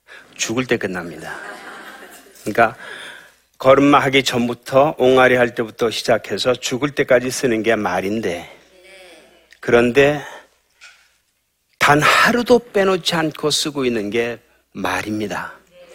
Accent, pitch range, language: native, 110-140 Hz, Korean